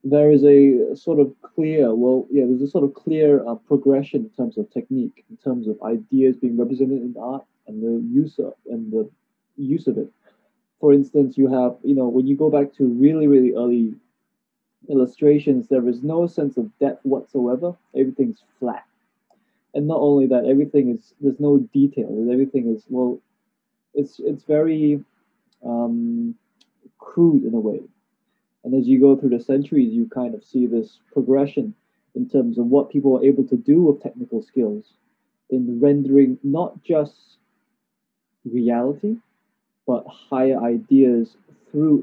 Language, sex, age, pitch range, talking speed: English, male, 20-39, 130-215 Hz, 160 wpm